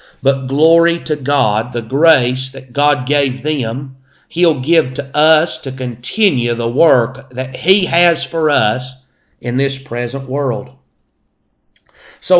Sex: male